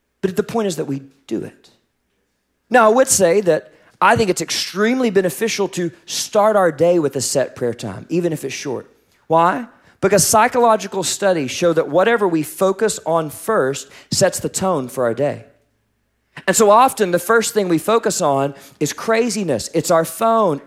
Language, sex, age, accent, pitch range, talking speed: English, male, 40-59, American, 135-200 Hz, 180 wpm